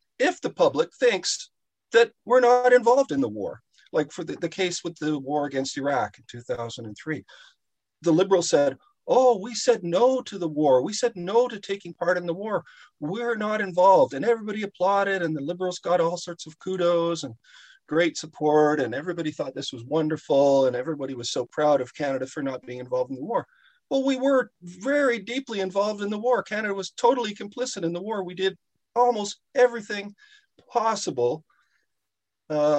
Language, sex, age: English, male, 40-59